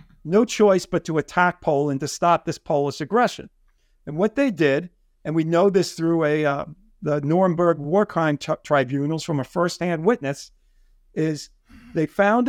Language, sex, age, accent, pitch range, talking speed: English, male, 50-69, American, 160-215 Hz, 170 wpm